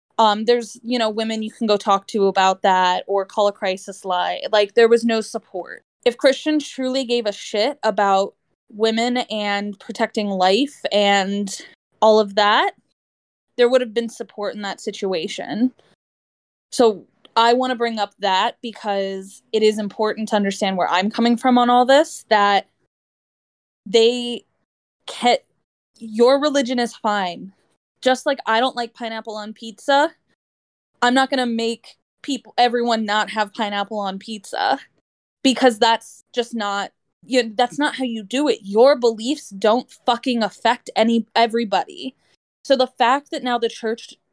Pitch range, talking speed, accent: 210-245 Hz, 160 wpm, American